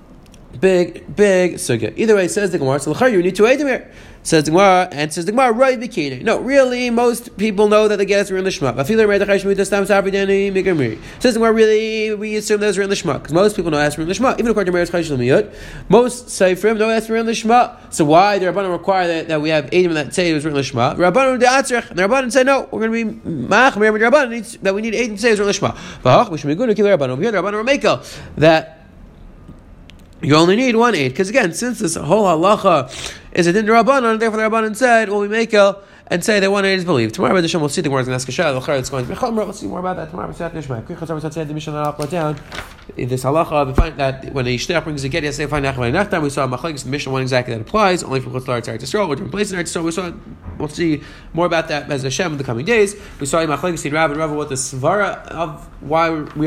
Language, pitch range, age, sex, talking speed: English, 150-205 Hz, 30-49, male, 245 wpm